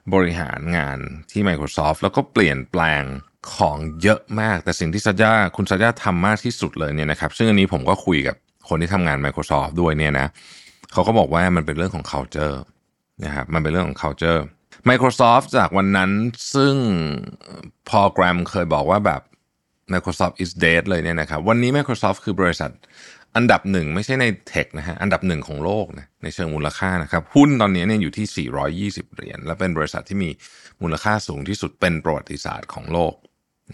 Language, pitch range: Thai, 80-100 Hz